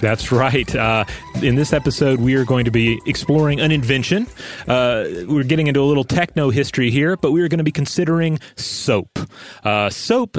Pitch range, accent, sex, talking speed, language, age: 100-135 Hz, American, male, 190 wpm, English, 30-49